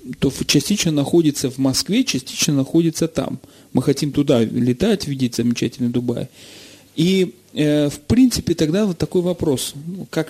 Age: 40-59